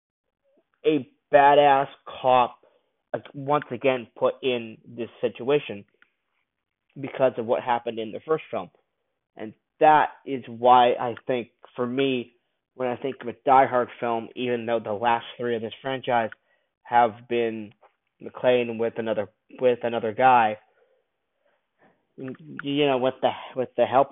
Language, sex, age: English, male, 20-39